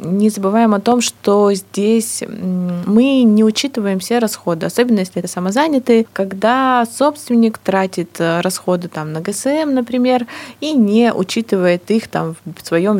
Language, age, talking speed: Russian, 20-39, 130 wpm